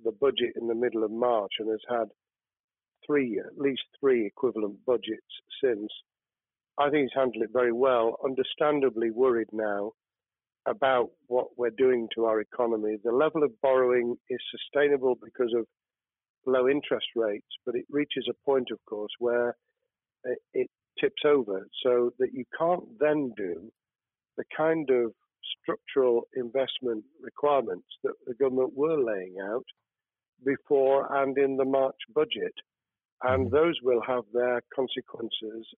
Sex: male